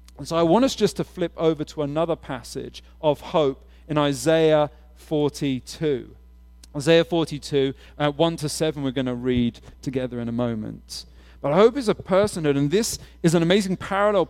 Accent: British